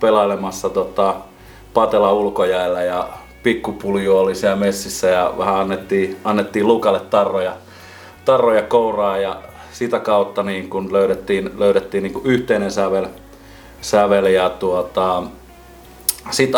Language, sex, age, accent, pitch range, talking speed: Finnish, male, 30-49, native, 95-155 Hz, 115 wpm